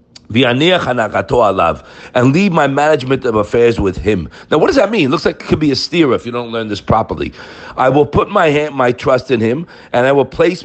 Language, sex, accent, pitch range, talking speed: English, male, American, 110-155 Hz, 225 wpm